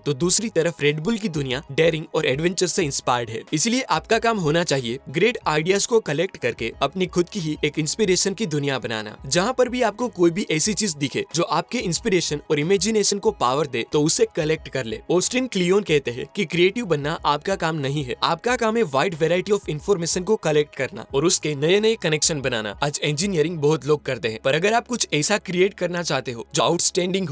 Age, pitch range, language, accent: 20-39, 145-200 Hz, Hindi, native